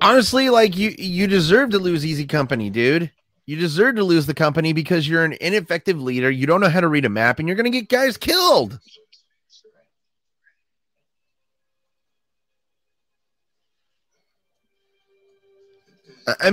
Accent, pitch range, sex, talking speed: American, 135-205 Hz, male, 135 wpm